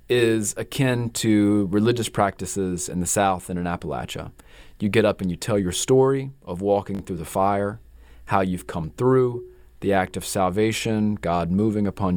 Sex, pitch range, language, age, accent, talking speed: male, 95-110 Hz, English, 30-49, American, 175 wpm